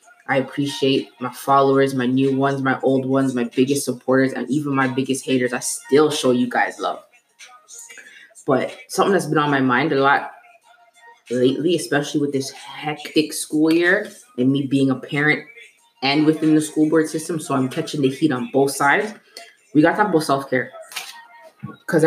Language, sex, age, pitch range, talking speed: English, female, 20-39, 135-175 Hz, 180 wpm